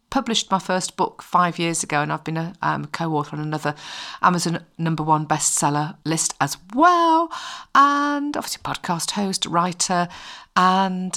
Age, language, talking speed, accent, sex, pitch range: 50-69, English, 150 wpm, British, female, 160-240 Hz